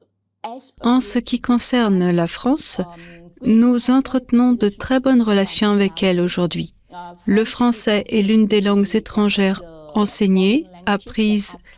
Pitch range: 190-235 Hz